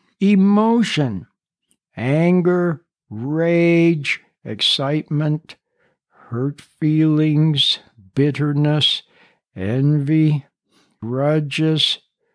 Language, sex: English, male